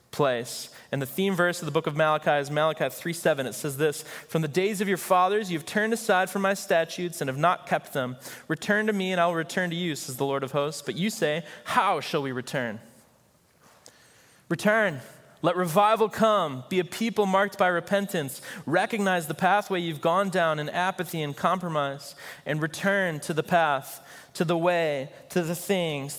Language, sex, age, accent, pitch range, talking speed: English, male, 20-39, American, 145-180 Hz, 195 wpm